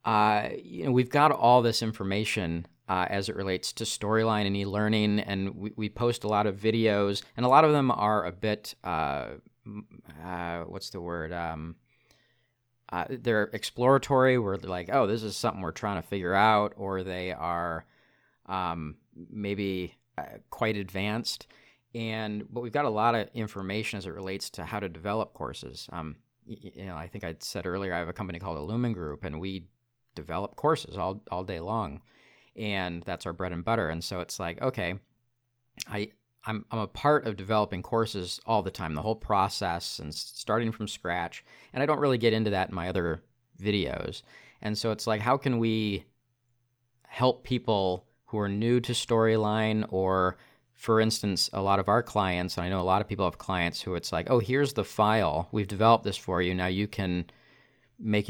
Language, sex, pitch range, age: English, male, 95-115 Hz, 40-59